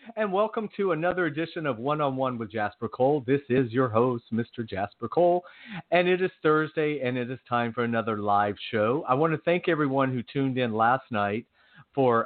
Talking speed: 205 wpm